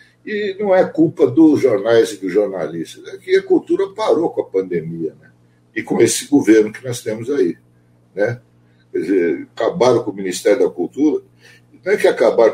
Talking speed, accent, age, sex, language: 185 wpm, Brazilian, 60-79, male, Portuguese